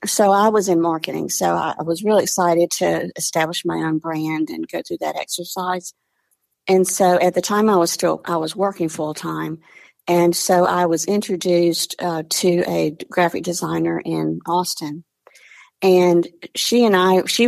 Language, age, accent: English, 50-69, American